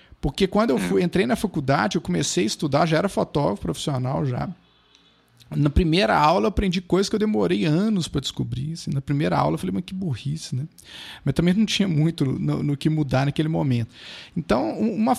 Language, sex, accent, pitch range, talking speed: Portuguese, male, Brazilian, 135-175 Hz, 205 wpm